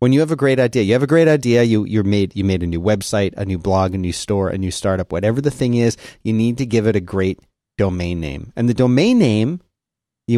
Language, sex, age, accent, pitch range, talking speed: English, male, 30-49, American, 105-135 Hz, 265 wpm